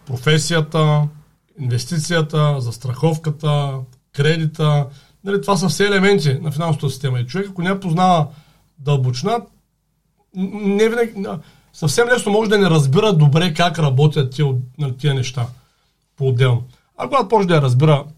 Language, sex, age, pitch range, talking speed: Bulgarian, male, 40-59, 140-175 Hz, 130 wpm